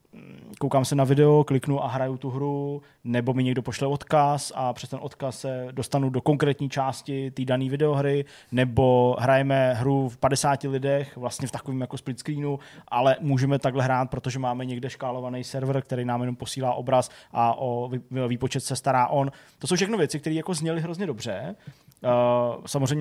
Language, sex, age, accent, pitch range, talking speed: Czech, male, 20-39, native, 125-145 Hz, 175 wpm